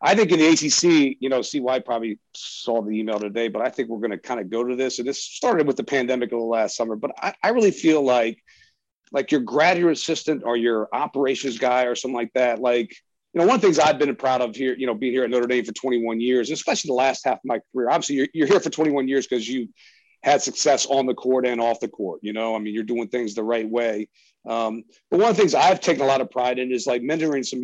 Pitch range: 120-150 Hz